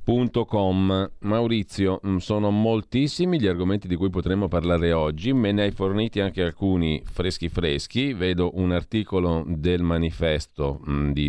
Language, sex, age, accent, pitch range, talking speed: Italian, male, 40-59, native, 80-100 Hz, 135 wpm